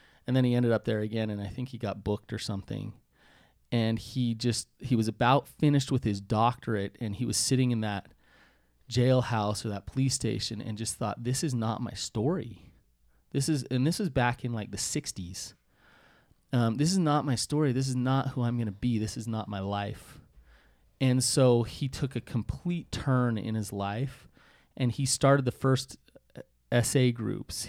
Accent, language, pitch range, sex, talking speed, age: American, English, 110-130 Hz, male, 195 wpm, 30-49